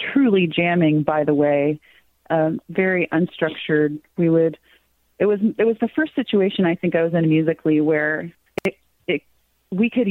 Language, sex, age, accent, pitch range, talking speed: English, female, 30-49, American, 160-200 Hz, 155 wpm